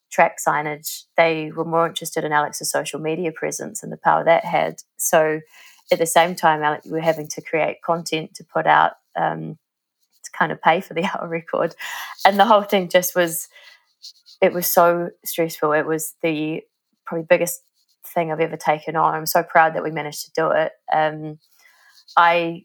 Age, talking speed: 20-39, 190 wpm